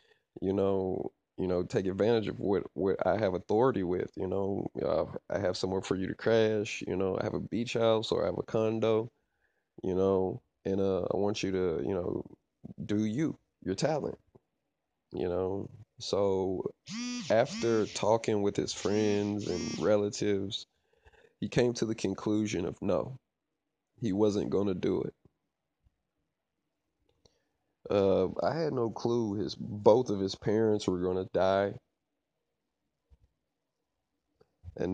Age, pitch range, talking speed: 20-39, 95-110 Hz, 150 wpm